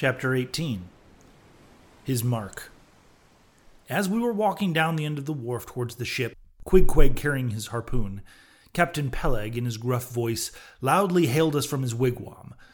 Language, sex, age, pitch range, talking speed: English, male, 30-49, 110-145 Hz, 155 wpm